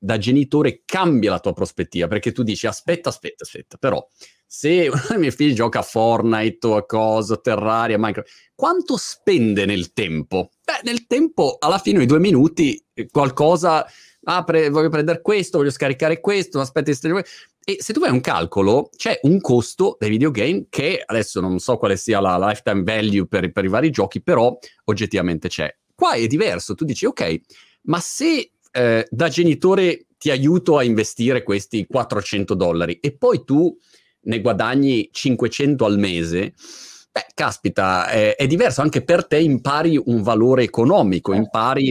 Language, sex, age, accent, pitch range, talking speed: Italian, male, 30-49, native, 105-155 Hz, 160 wpm